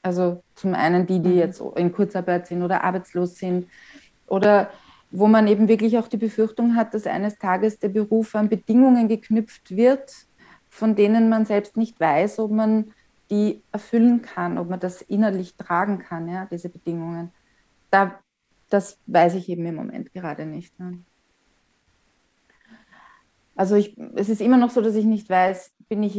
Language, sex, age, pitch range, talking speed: German, female, 30-49, 185-225 Hz, 160 wpm